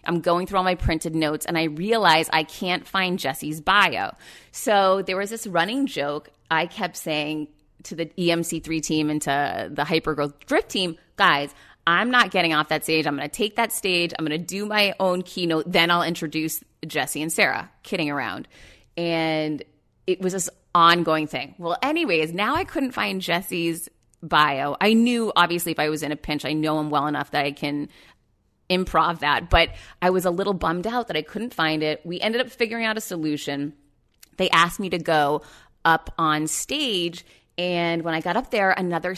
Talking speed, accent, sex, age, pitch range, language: 200 wpm, American, female, 30-49, 155-185 Hz, English